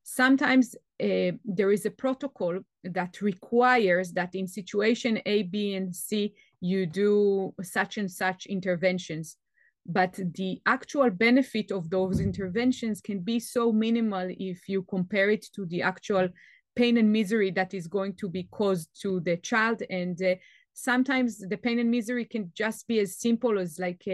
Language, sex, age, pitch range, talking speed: English, female, 30-49, 185-220 Hz, 160 wpm